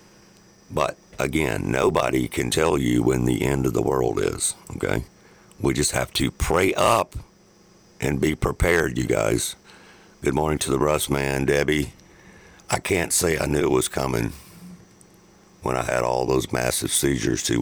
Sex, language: male, Japanese